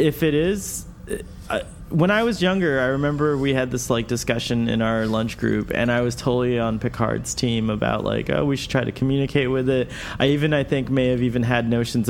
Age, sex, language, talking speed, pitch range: 20-39, male, English, 220 wpm, 115-145 Hz